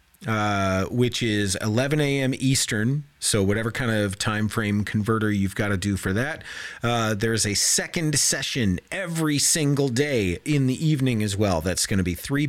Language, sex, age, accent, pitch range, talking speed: English, male, 40-59, American, 95-140 Hz, 180 wpm